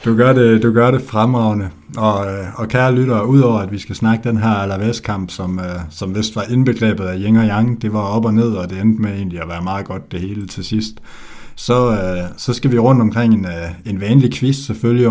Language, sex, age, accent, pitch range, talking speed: Danish, male, 60-79, native, 95-125 Hz, 225 wpm